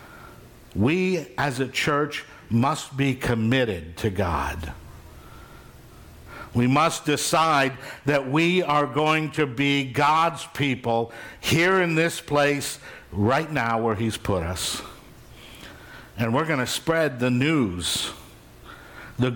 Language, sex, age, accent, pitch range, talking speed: English, male, 60-79, American, 115-165 Hz, 120 wpm